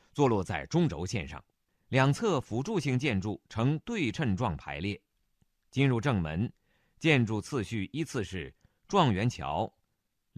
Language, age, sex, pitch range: Chinese, 50-69, male, 100-145 Hz